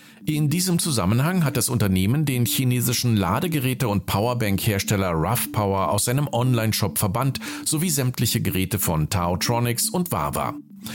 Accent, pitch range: German, 100-155 Hz